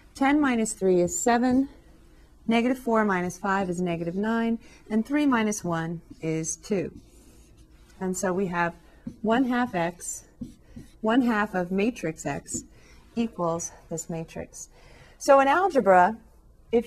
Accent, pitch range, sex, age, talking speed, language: American, 175-220 Hz, female, 40-59, 130 wpm, English